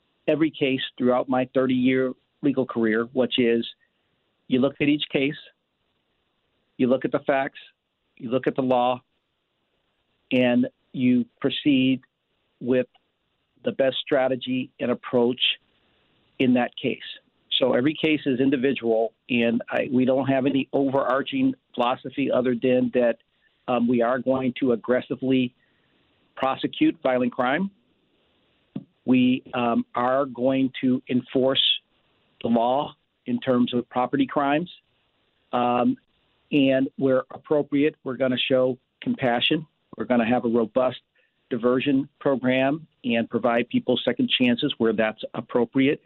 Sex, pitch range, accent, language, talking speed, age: male, 120-140 Hz, American, English, 130 wpm, 50-69